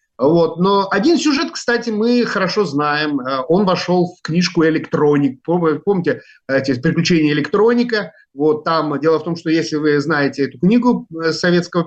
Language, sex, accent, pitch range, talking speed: Russian, male, native, 140-185 Hz, 145 wpm